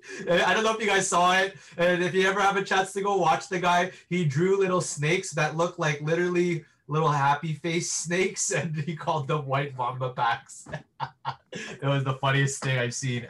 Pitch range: 125-155 Hz